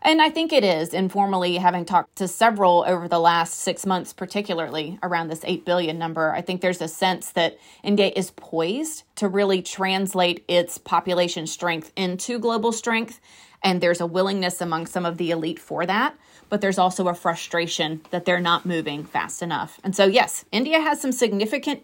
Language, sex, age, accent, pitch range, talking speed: English, female, 30-49, American, 170-205 Hz, 185 wpm